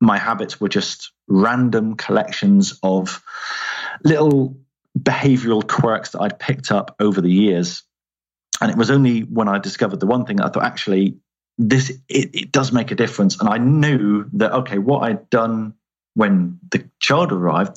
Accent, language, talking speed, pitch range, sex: British, English, 170 wpm, 95-140 Hz, male